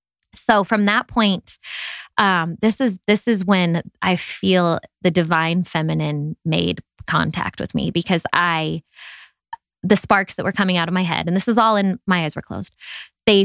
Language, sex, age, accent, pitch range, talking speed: English, female, 20-39, American, 175-230 Hz, 180 wpm